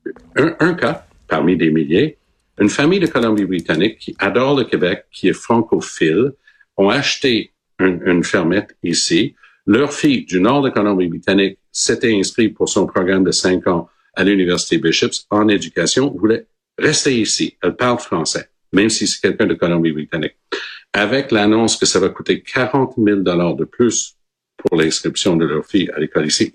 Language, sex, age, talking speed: French, male, 60-79, 165 wpm